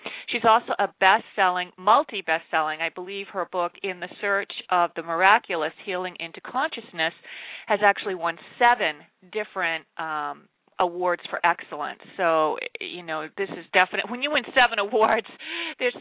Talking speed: 155 wpm